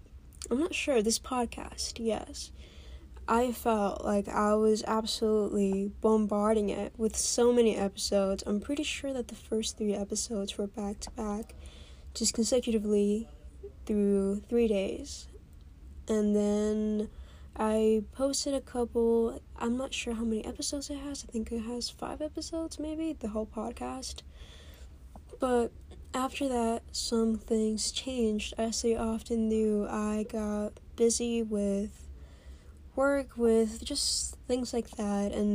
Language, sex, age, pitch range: English, female, 10-29, 200-230 Hz